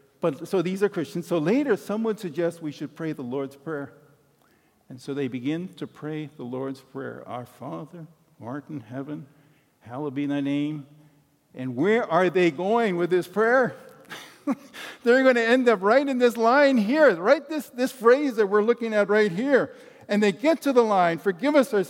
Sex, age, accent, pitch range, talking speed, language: male, 50-69, American, 145-230 Hz, 190 wpm, English